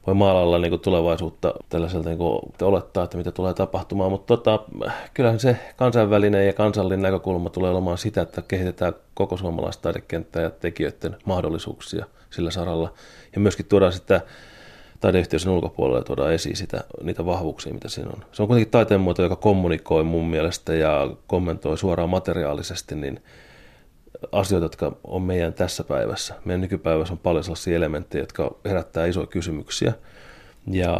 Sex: male